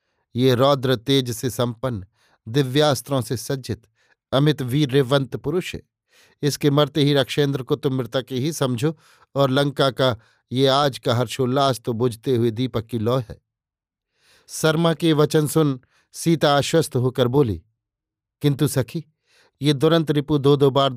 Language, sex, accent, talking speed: Hindi, male, native, 145 wpm